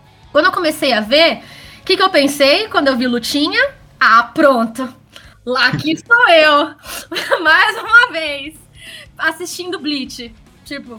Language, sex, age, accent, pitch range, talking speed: Portuguese, female, 10-29, Brazilian, 255-345 Hz, 140 wpm